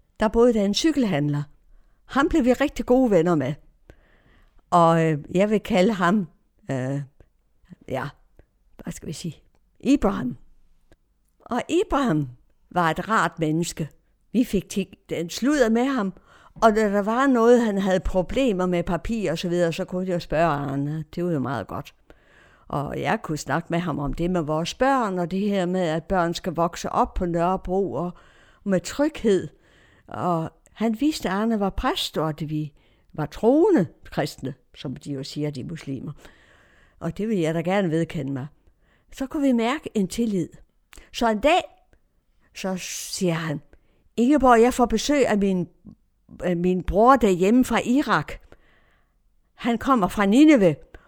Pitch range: 160-225 Hz